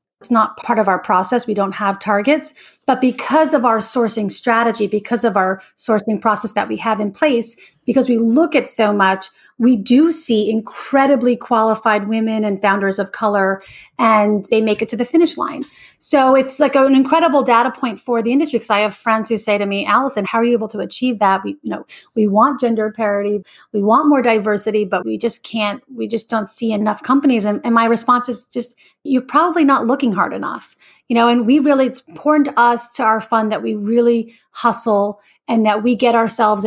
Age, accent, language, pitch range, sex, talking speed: 30-49, American, English, 210-260 Hz, female, 215 wpm